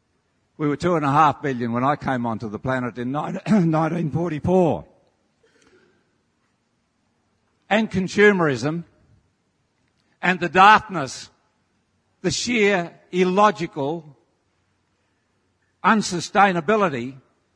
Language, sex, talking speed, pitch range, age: English, male, 80 wpm, 115-195 Hz, 60-79